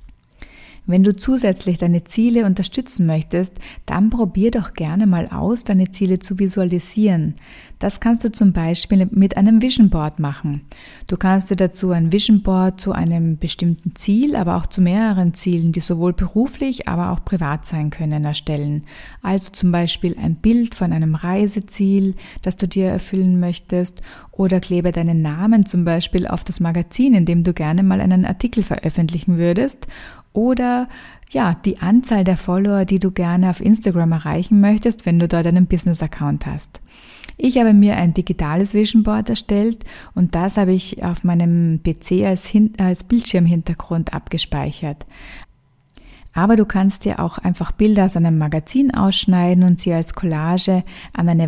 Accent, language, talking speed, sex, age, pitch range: German, German, 165 wpm, female, 30-49, 170-200 Hz